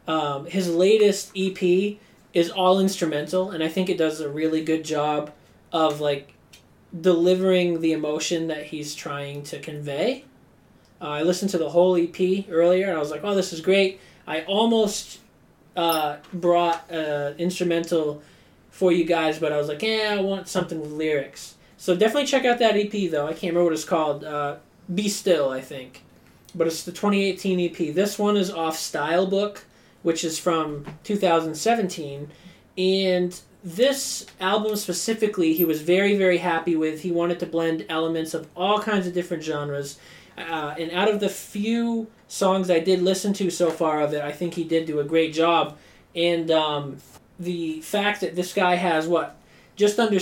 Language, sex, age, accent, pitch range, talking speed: English, male, 20-39, American, 155-190 Hz, 175 wpm